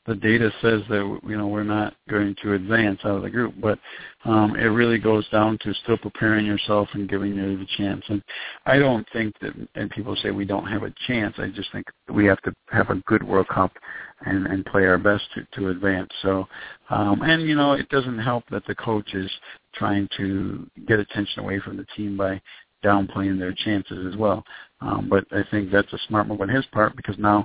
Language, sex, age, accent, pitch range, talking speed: English, male, 50-69, American, 95-110 Hz, 220 wpm